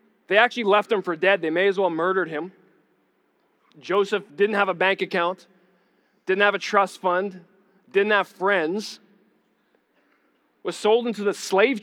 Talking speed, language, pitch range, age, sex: 160 wpm, English, 175-210 Hz, 20-39, male